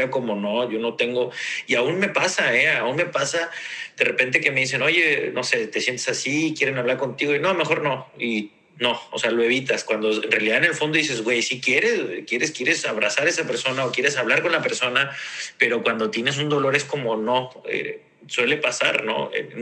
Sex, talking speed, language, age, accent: male, 220 wpm, Spanish, 40-59, Mexican